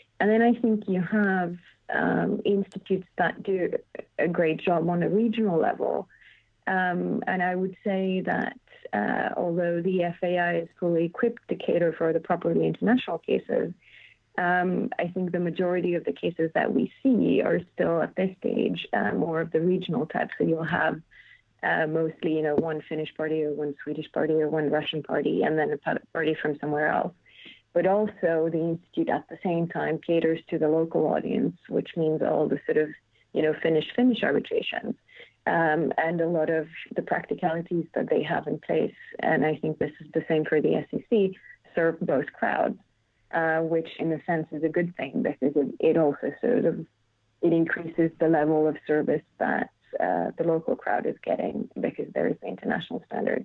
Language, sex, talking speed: English, female, 185 wpm